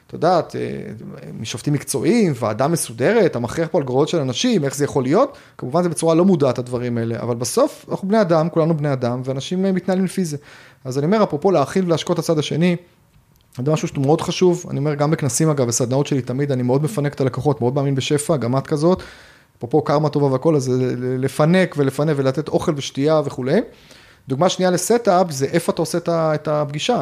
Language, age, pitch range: Hebrew, 30-49, 130-170 Hz